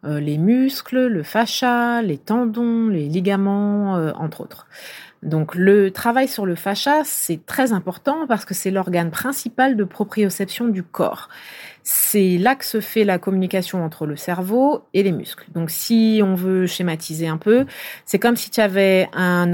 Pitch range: 175-230 Hz